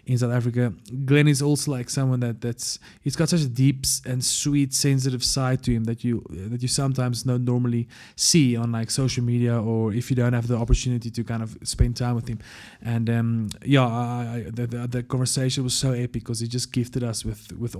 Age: 20-39